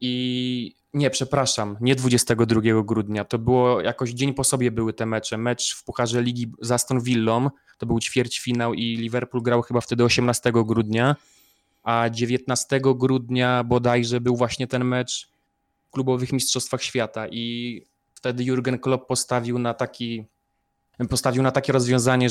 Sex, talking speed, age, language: male, 150 wpm, 20-39, Polish